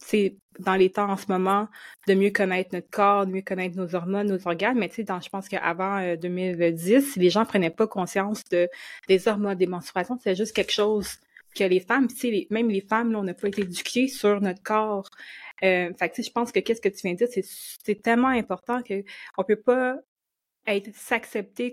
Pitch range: 185-225 Hz